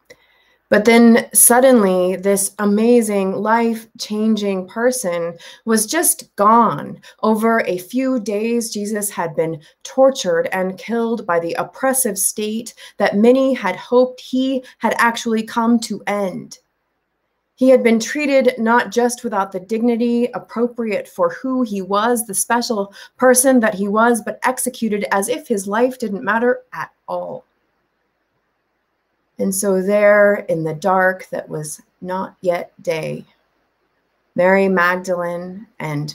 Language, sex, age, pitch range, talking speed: English, female, 30-49, 185-235 Hz, 130 wpm